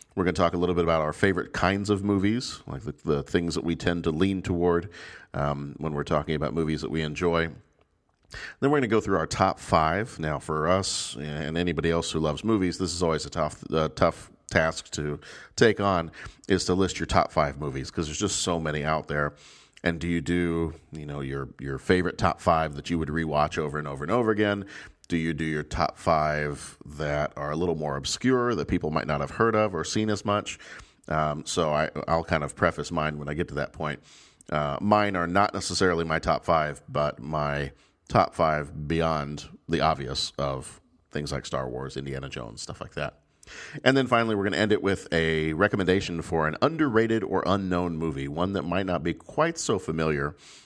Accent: American